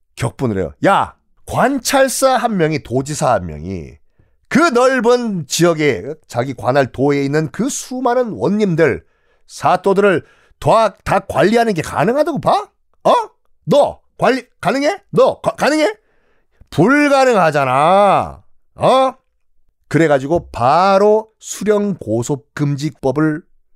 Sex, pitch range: male, 155-225 Hz